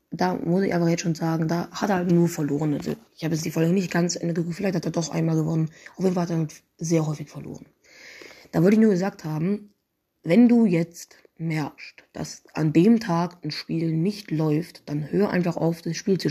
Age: 20-39